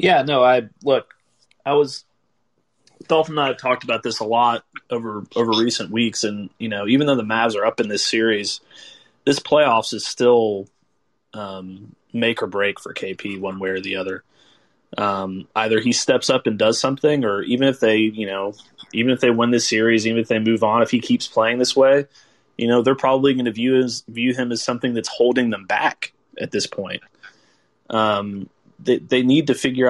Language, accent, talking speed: English, American, 205 wpm